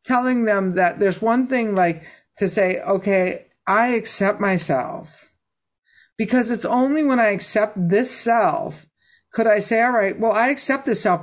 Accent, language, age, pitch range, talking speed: American, English, 50-69, 175-250 Hz, 165 wpm